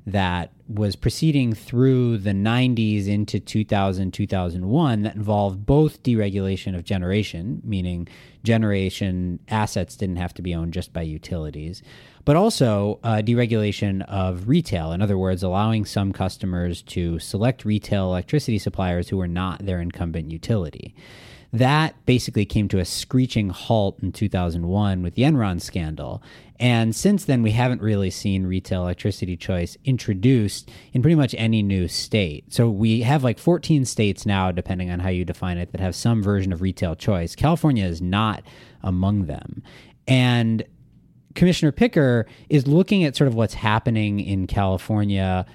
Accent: American